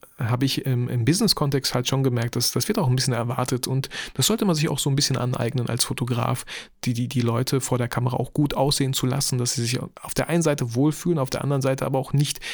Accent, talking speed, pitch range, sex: German, 255 wpm, 125-155 Hz, male